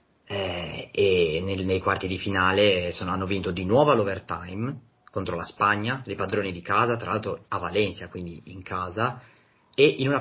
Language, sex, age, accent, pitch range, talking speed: Italian, male, 30-49, native, 95-110 Hz, 175 wpm